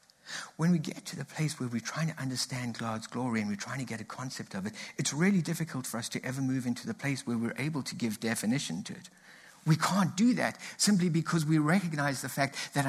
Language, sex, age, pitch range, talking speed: English, male, 60-79, 135-180 Hz, 240 wpm